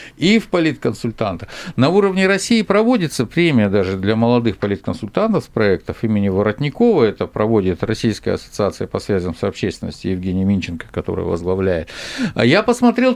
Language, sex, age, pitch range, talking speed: Russian, male, 50-69, 115-185 Hz, 135 wpm